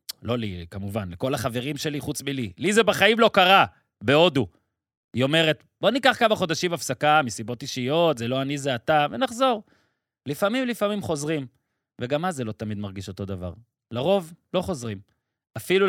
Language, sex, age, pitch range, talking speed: Hebrew, male, 30-49, 125-170 Hz, 165 wpm